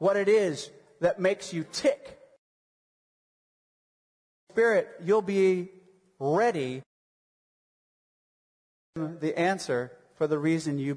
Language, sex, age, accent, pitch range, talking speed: English, male, 30-49, American, 155-215 Hz, 100 wpm